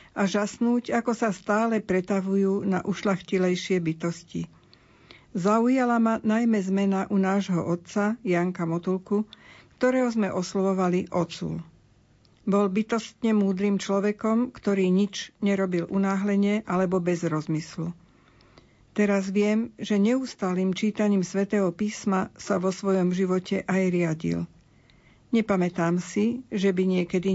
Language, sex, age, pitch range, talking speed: Slovak, female, 50-69, 180-210 Hz, 110 wpm